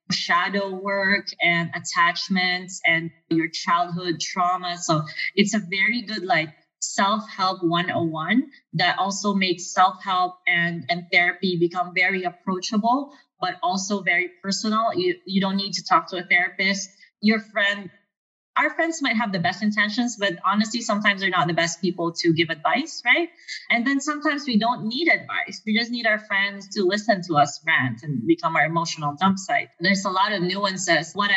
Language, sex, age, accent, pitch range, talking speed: English, female, 20-39, Filipino, 175-215 Hz, 170 wpm